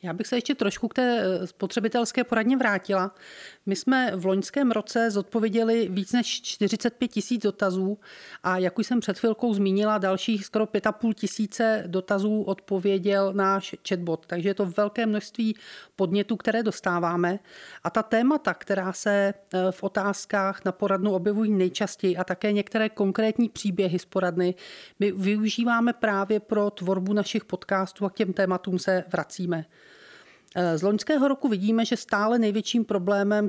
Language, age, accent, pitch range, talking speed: Czech, 40-59, native, 190-220 Hz, 150 wpm